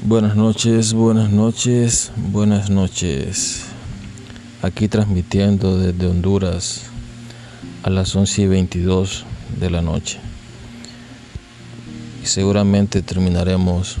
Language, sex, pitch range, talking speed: Spanish, male, 90-115 Hz, 85 wpm